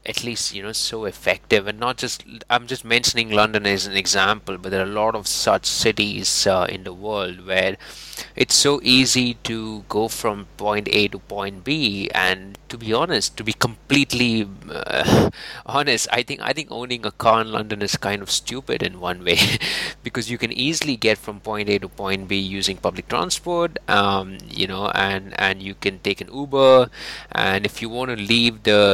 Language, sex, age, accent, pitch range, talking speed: English, male, 30-49, Indian, 100-120 Hz, 200 wpm